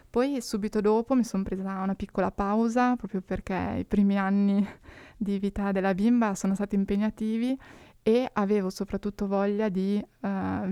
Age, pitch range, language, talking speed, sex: 20-39, 195-220 Hz, Italian, 150 wpm, female